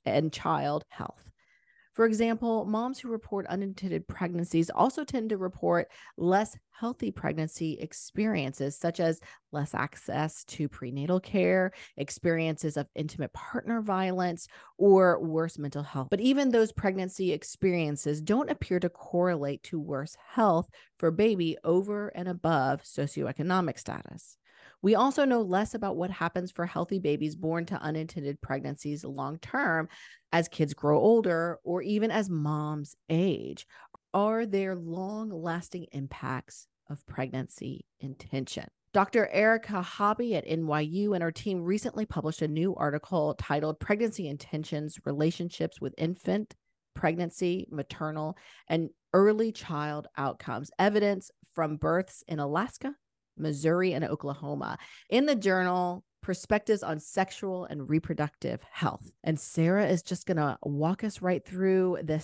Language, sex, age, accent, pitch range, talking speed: English, female, 30-49, American, 150-195 Hz, 130 wpm